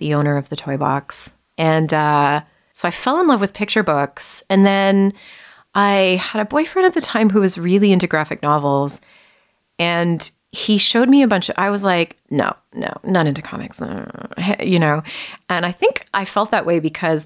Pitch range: 155-225 Hz